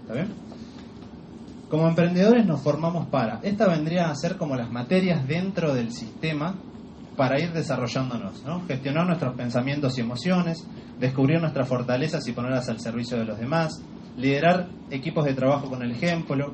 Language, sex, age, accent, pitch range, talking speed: Spanish, male, 30-49, Argentinian, 130-165 Hz, 145 wpm